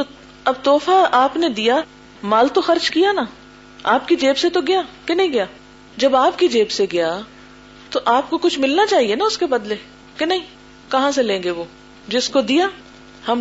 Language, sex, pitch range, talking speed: Urdu, female, 230-300 Hz, 205 wpm